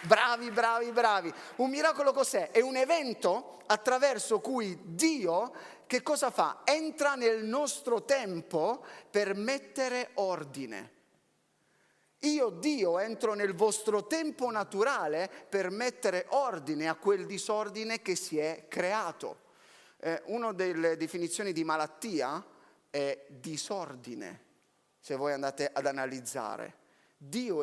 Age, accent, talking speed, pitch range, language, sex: 30-49, native, 115 wpm, 155-240 Hz, Italian, male